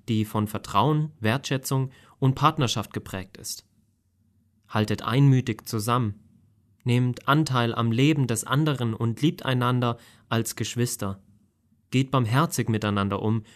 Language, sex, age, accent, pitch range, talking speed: German, male, 30-49, German, 105-130 Hz, 115 wpm